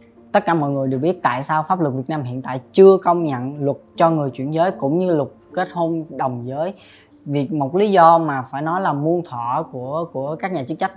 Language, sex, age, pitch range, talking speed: Vietnamese, female, 20-39, 135-175 Hz, 245 wpm